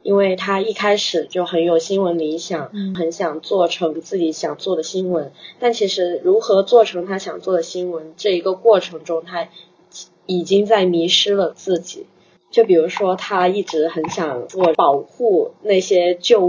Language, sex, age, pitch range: Chinese, female, 20-39, 170-200 Hz